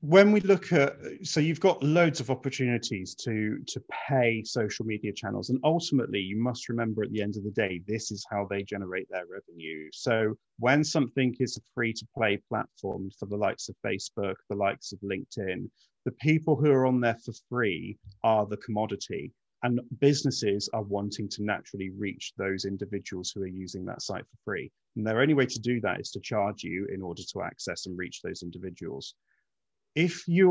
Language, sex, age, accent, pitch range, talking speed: English, male, 30-49, British, 100-130 Hz, 195 wpm